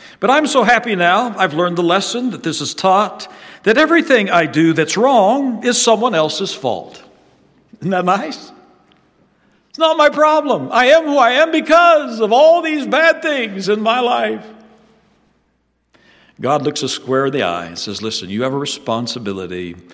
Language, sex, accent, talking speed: English, male, American, 175 wpm